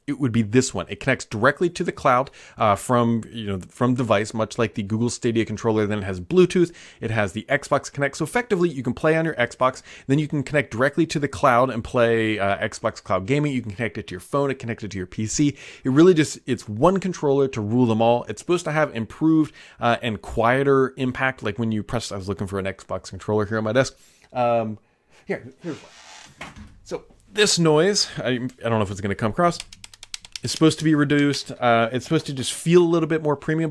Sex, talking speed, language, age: male, 240 wpm, English, 30-49